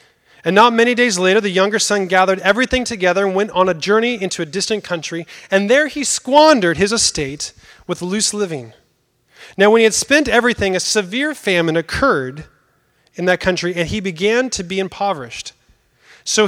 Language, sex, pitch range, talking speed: English, male, 185-235 Hz, 180 wpm